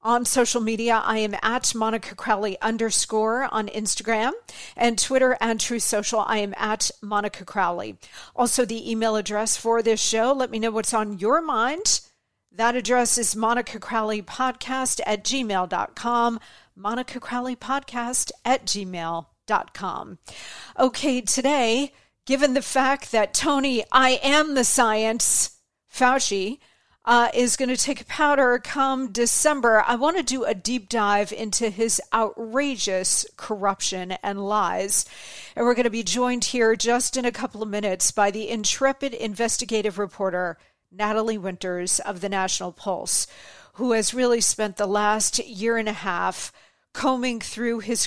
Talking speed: 150 wpm